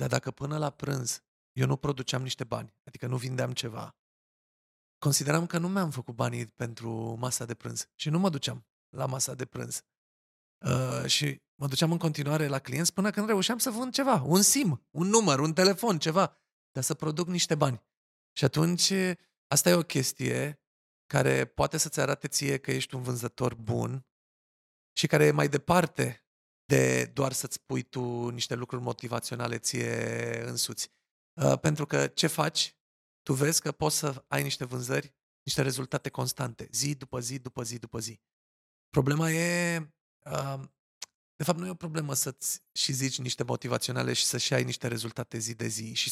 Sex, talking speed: male, 170 wpm